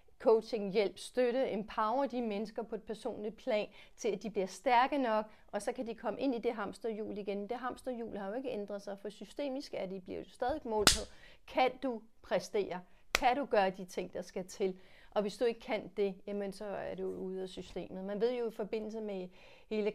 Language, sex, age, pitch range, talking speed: Danish, female, 40-59, 185-215 Hz, 215 wpm